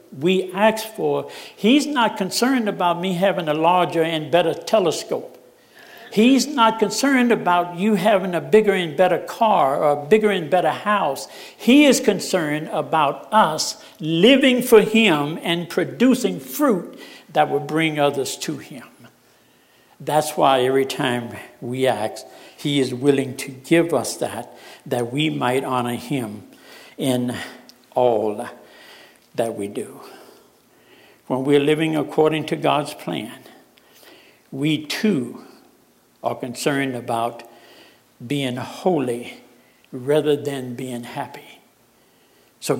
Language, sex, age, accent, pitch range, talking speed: English, male, 60-79, American, 130-190 Hz, 125 wpm